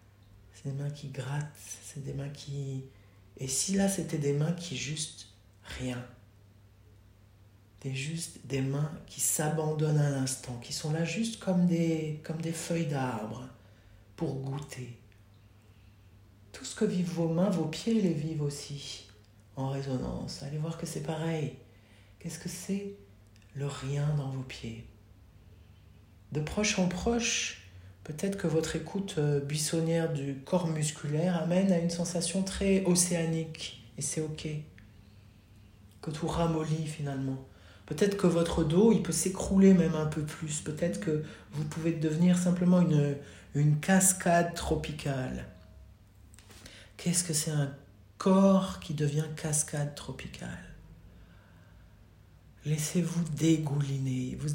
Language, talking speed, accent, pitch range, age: French, 135 wpm, French, 105-165 Hz, 60-79